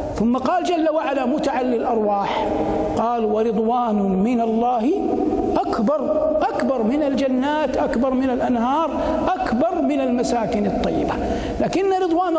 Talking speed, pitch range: 110 wpm, 230-305 Hz